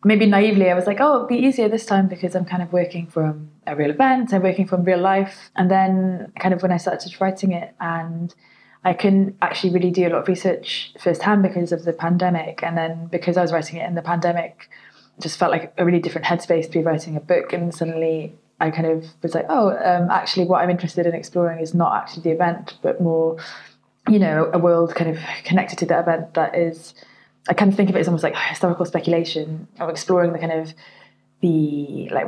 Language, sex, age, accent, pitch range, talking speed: English, female, 20-39, British, 165-190 Hz, 230 wpm